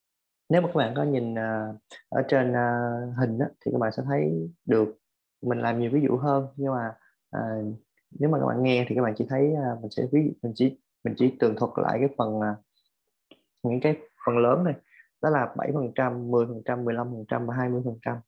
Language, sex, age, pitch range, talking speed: Vietnamese, male, 20-39, 115-140 Hz, 235 wpm